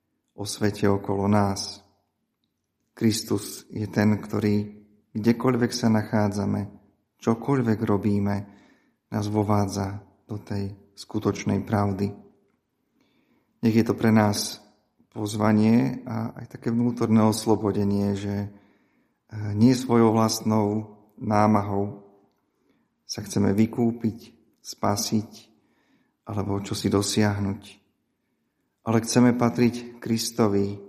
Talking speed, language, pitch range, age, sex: 90 wpm, Slovak, 100-115 Hz, 40-59, male